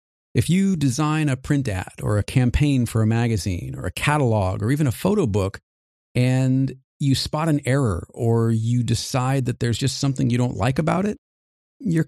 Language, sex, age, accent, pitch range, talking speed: English, male, 40-59, American, 105-135 Hz, 190 wpm